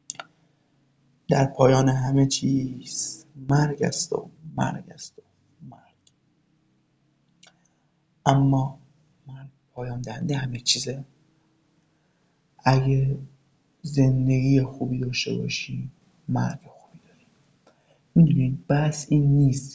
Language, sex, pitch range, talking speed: Persian, male, 130-155 Hz, 90 wpm